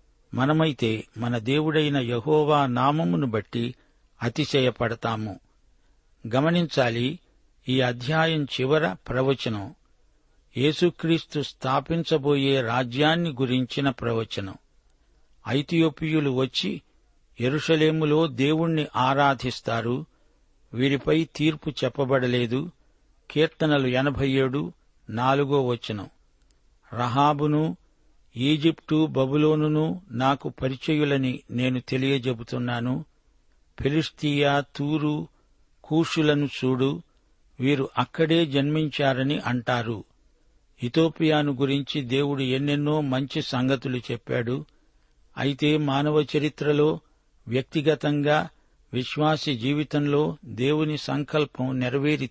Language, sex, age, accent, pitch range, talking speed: Telugu, male, 60-79, native, 125-150 Hz, 70 wpm